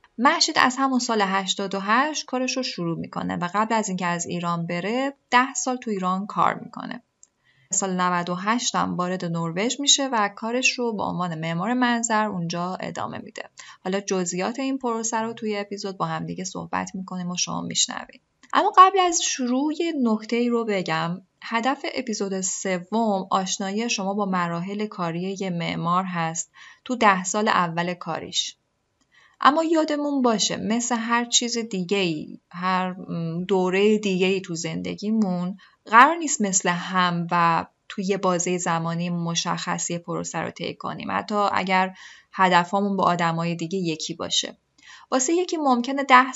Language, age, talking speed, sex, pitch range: Persian, 10-29, 145 wpm, female, 180-250 Hz